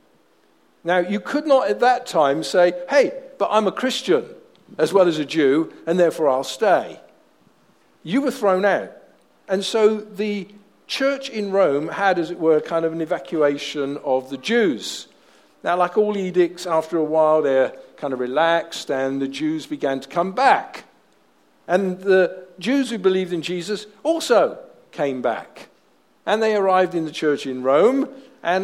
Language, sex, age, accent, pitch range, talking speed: English, male, 50-69, British, 165-240 Hz, 170 wpm